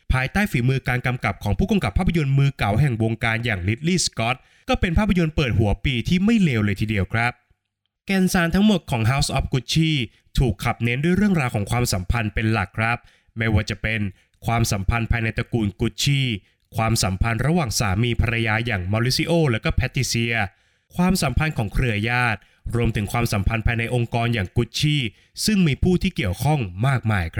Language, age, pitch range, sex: Thai, 20-39, 110-155 Hz, male